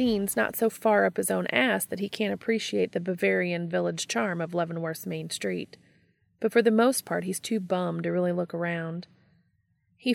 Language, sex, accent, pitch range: English, female, American, 160-205 Hz